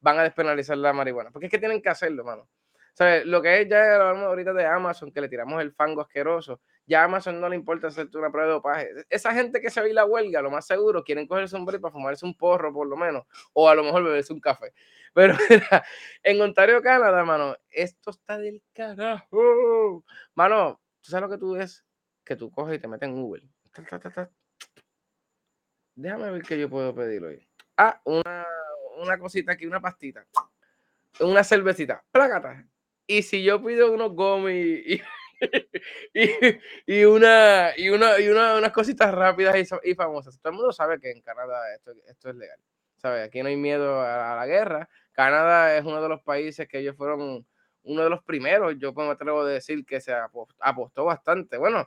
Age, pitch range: 20-39, 150-210 Hz